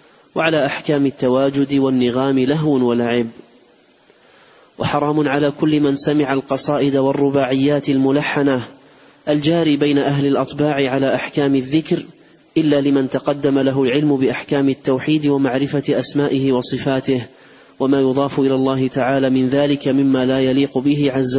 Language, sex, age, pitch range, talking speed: Arabic, male, 30-49, 130-145 Hz, 120 wpm